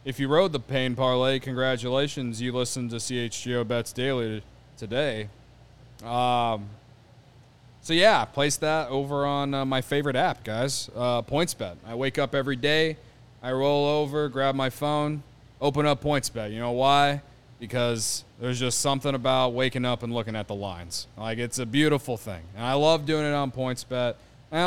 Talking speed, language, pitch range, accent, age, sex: 180 wpm, English, 120-150 Hz, American, 20-39, male